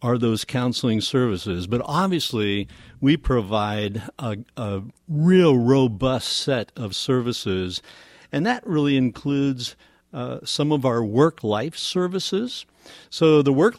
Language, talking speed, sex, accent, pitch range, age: English, 125 wpm, male, American, 110-145 Hz, 60-79